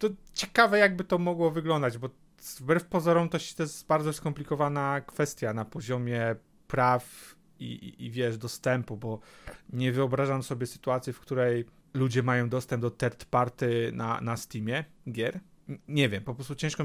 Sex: male